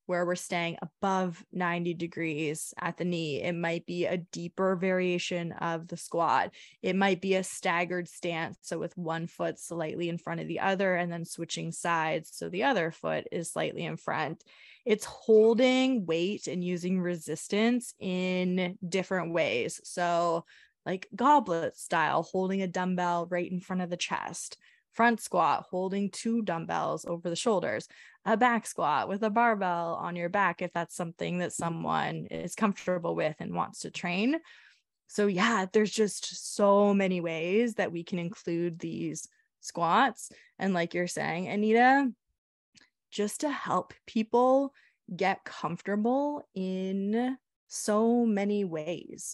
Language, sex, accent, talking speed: English, female, American, 150 wpm